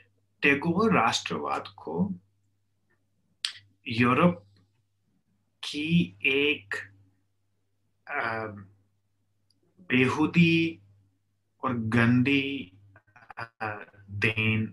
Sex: male